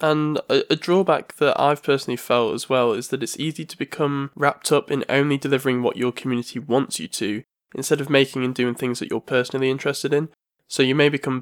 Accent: British